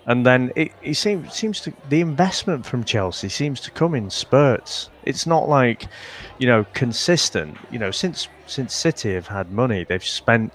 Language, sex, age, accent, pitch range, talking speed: English, male, 30-49, British, 95-130 Hz, 180 wpm